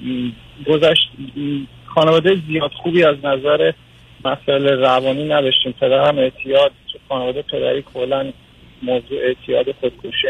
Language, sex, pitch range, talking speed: Persian, male, 125-160 Hz, 110 wpm